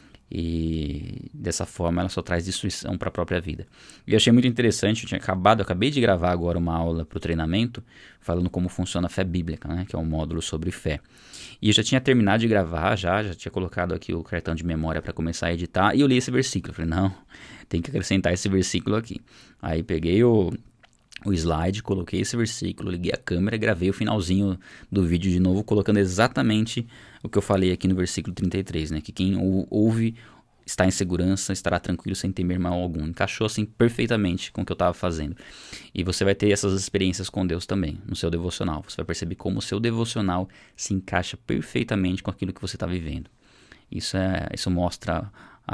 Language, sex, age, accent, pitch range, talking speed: Portuguese, male, 20-39, Brazilian, 85-100 Hz, 205 wpm